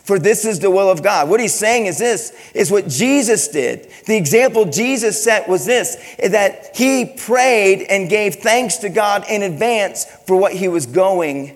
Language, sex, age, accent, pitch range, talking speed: English, male, 40-59, American, 195-230 Hz, 190 wpm